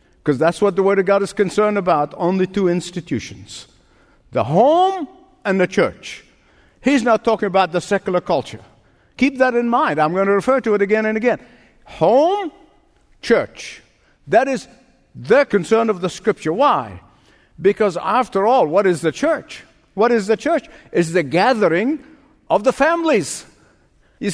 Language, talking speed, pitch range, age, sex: English, 165 wpm, 170-245 Hz, 50-69, male